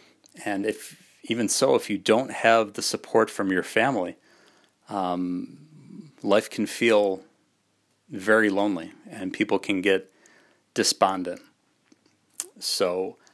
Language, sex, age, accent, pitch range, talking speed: English, male, 40-59, American, 95-110 Hz, 115 wpm